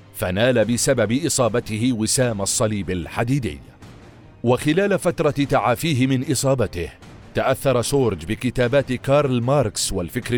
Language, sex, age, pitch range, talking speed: Arabic, male, 40-59, 115-150 Hz, 100 wpm